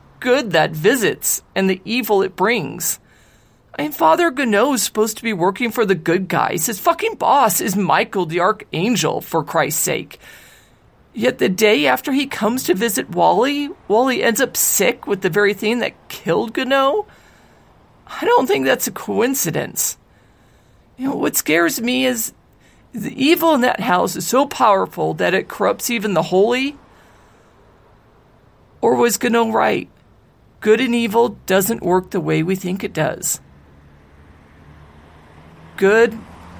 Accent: American